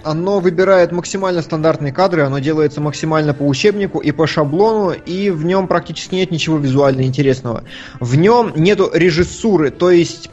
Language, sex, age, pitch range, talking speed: Russian, male, 20-39, 150-195 Hz, 155 wpm